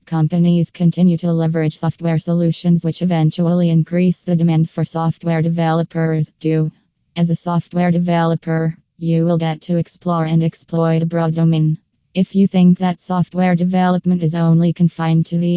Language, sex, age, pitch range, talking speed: English, female, 20-39, 160-175 Hz, 155 wpm